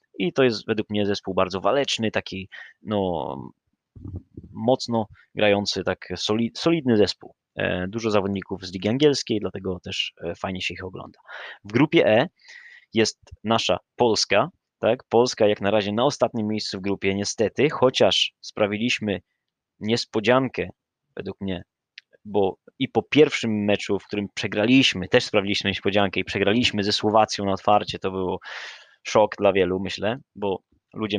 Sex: male